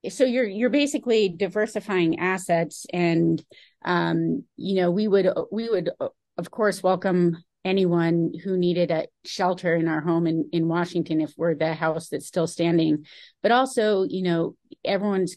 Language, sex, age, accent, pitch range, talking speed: English, female, 30-49, American, 165-190 Hz, 155 wpm